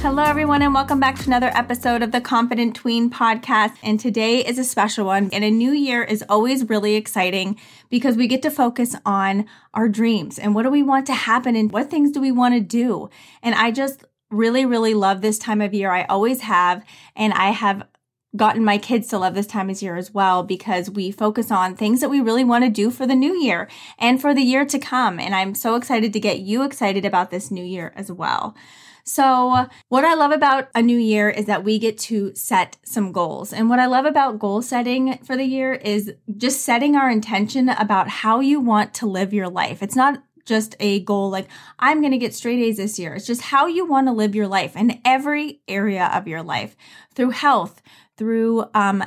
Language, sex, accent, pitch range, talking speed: English, female, American, 205-255 Hz, 225 wpm